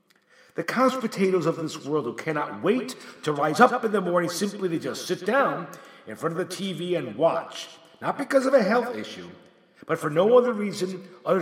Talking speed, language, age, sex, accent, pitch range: 205 wpm, English, 50-69, male, American, 165-230 Hz